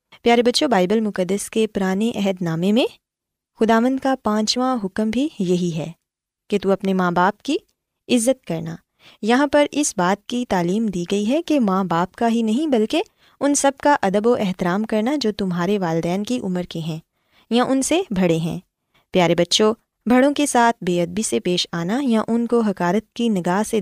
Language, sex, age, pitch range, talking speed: Urdu, female, 20-39, 180-245 Hz, 190 wpm